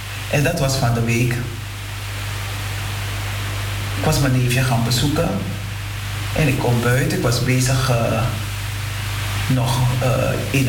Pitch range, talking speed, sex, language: 105-130 Hz, 130 wpm, male, Dutch